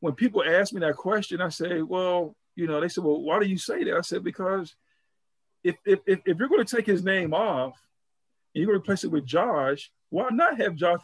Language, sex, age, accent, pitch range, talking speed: English, male, 50-69, American, 150-190 Hz, 240 wpm